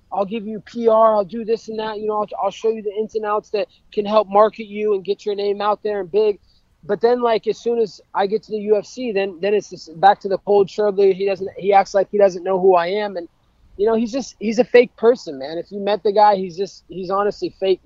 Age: 20-39